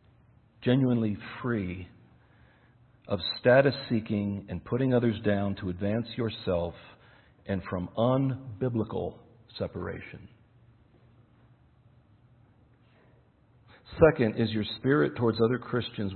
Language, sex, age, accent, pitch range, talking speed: English, male, 50-69, American, 110-125 Hz, 80 wpm